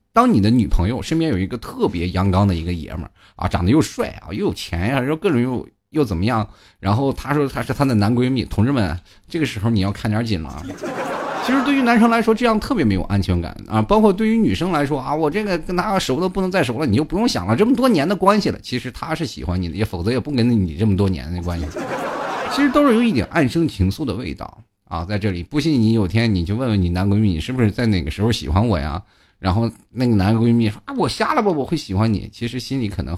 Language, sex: Chinese, male